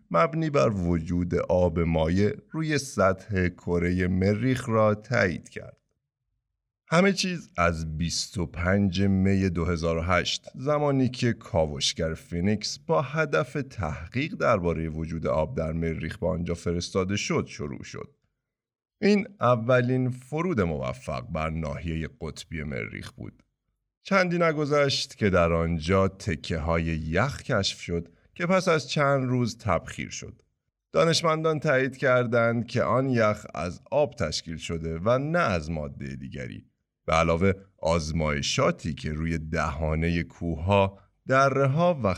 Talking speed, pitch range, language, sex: 125 wpm, 85-125 Hz, Persian, male